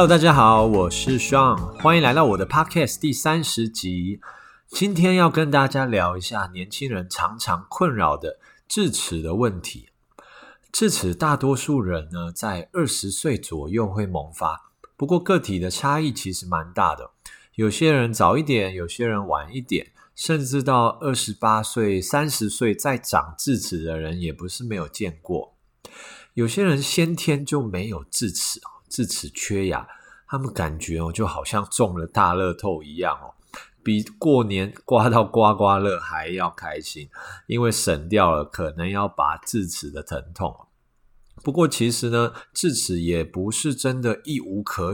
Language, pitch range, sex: Chinese, 95-140 Hz, male